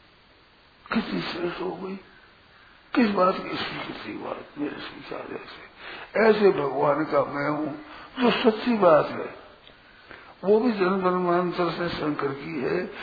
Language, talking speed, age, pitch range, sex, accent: Hindi, 135 wpm, 60-79, 160-215 Hz, male, native